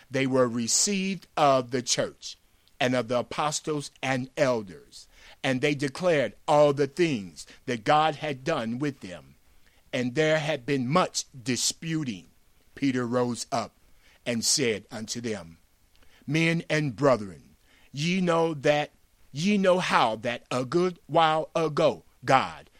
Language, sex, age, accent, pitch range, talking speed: English, male, 50-69, American, 120-155 Hz, 135 wpm